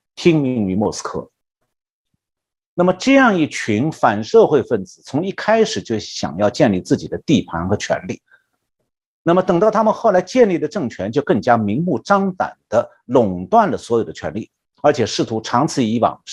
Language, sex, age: Chinese, male, 50-69